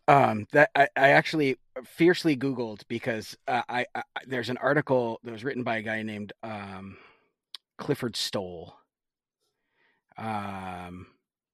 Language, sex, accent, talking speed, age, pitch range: English, male, American, 130 wpm, 30-49, 105-140 Hz